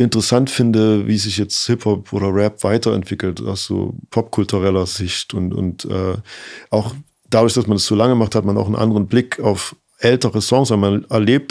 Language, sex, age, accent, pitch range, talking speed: German, male, 40-59, German, 105-125 Hz, 195 wpm